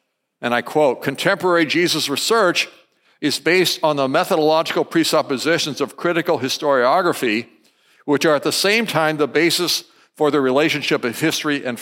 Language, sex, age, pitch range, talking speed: English, male, 60-79, 135-170 Hz, 145 wpm